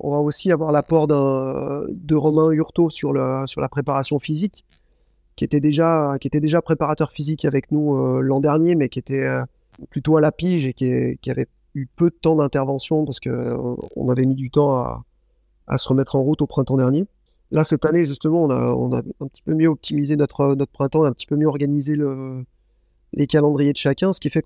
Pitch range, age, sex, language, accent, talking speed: 135-155 Hz, 30-49, male, French, French, 225 wpm